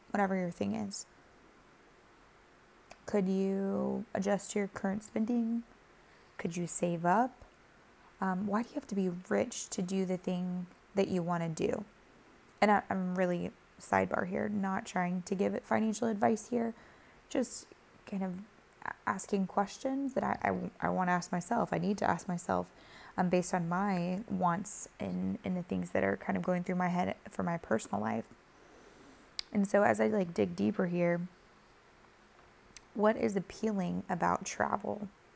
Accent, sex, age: American, female, 20-39